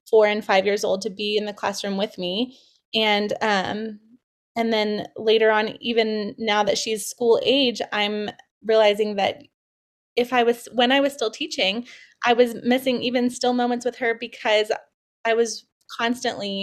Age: 20-39